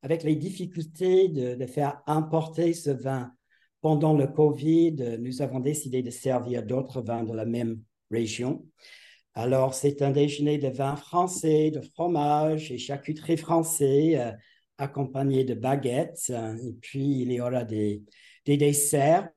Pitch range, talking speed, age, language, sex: 130-160 Hz, 150 wpm, 50-69, French, male